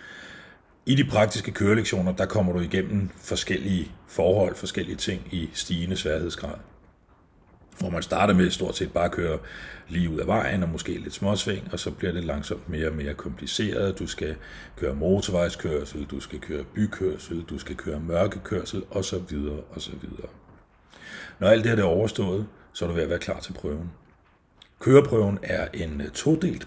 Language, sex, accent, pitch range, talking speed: Danish, male, native, 85-105 Hz, 165 wpm